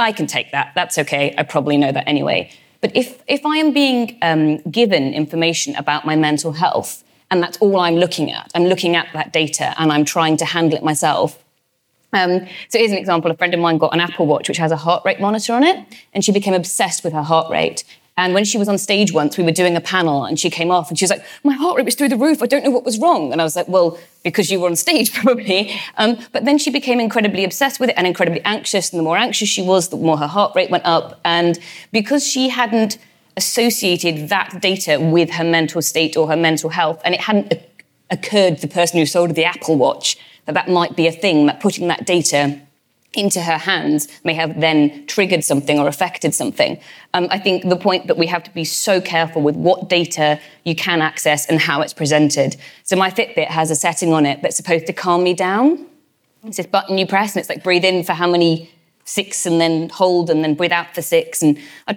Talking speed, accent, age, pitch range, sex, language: 240 wpm, British, 30-49, 160-200 Hz, female, English